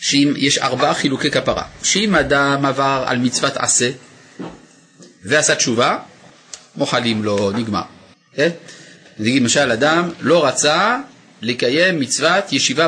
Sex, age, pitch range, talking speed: male, 30-49, 130-170 Hz, 115 wpm